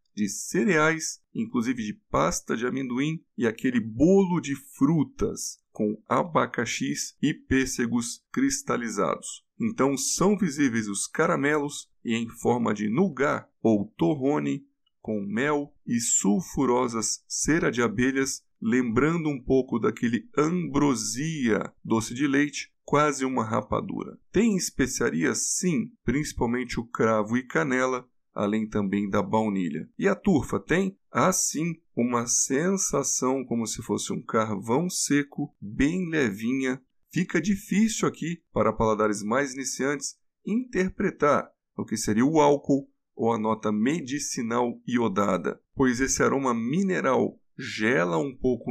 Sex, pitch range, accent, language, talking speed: male, 120-160 Hz, Brazilian, Portuguese, 125 wpm